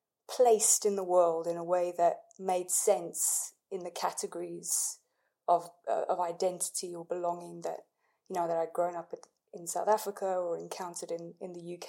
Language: English